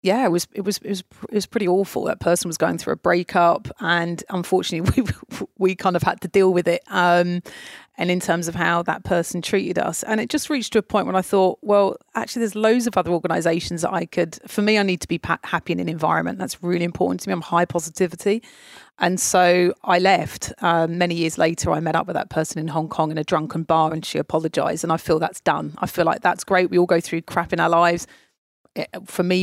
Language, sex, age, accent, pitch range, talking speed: English, female, 30-49, British, 170-190 Hz, 245 wpm